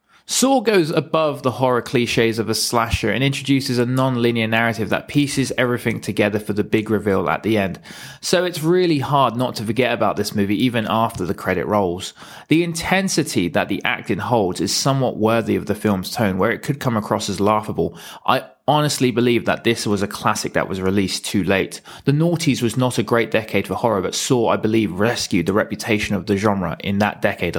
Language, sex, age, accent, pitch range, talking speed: English, male, 20-39, British, 105-125 Hz, 205 wpm